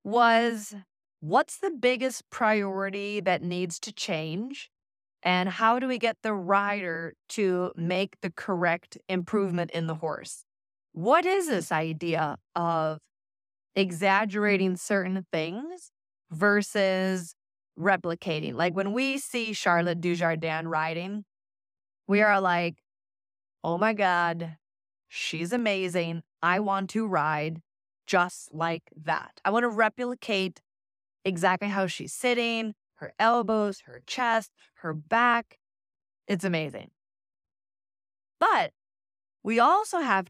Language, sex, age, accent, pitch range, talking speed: English, female, 20-39, American, 165-215 Hz, 115 wpm